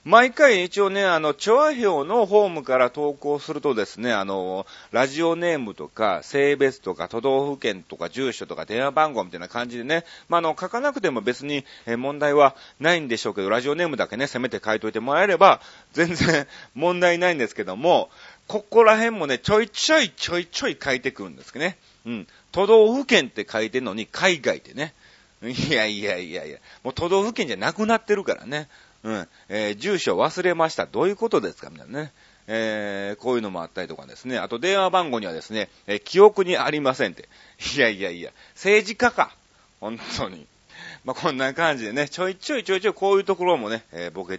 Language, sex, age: Japanese, male, 40-59